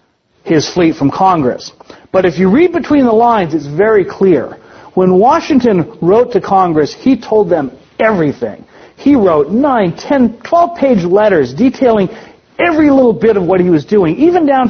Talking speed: 165 wpm